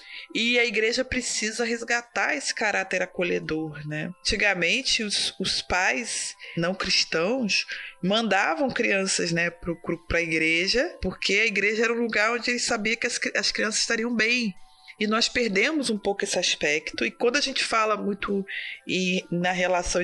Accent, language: Brazilian, Portuguese